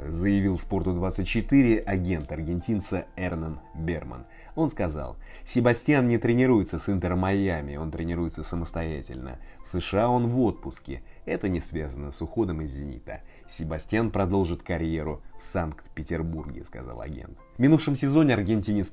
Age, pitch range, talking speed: 30-49, 80-105 Hz, 125 wpm